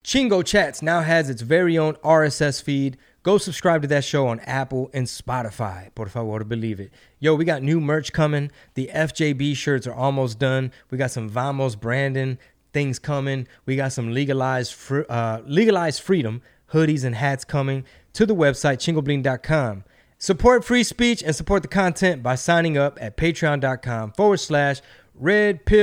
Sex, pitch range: male, 125-160 Hz